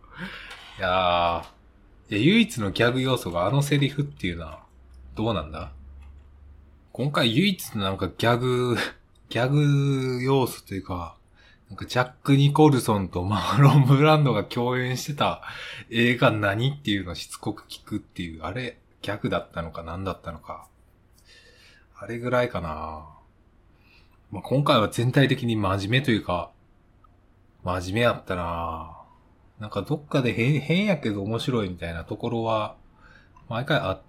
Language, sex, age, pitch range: Japanese, male, 20-39, 90-130 Hz